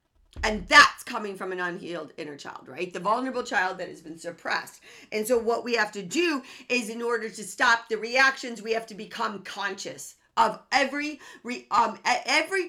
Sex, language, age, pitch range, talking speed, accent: female, English, 50-69, 200-270 Hz, 185 wpm, American